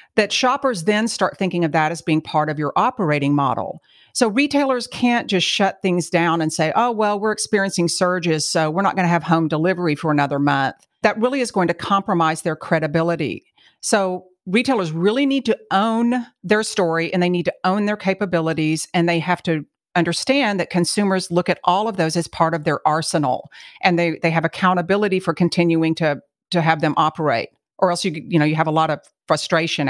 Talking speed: 205 wpm